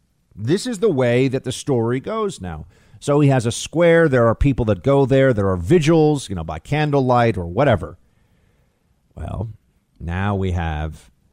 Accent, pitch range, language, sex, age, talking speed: American, 105-150 Hz, English, male, 50-69, 175 wpm